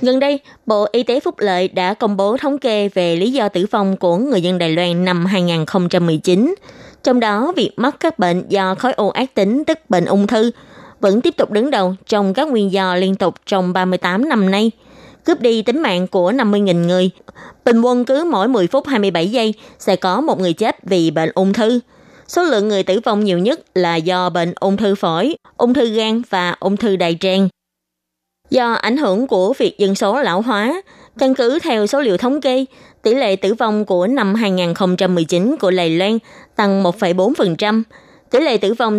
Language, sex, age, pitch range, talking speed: Vietnamese, female, 20-39, 185-245 Hz, 200 wpm